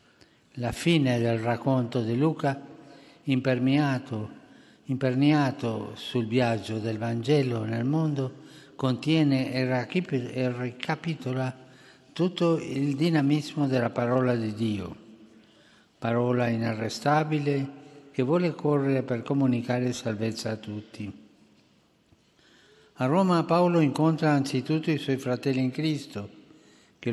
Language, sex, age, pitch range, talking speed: Italian, male, 60-79, 120-145 Hz, 95 wpm